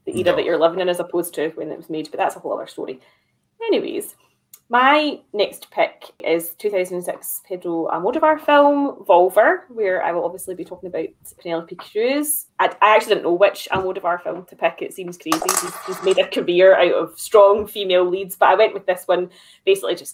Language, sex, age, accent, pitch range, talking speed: English, female, 20-39, British, 180-220 Hz, 205 wpm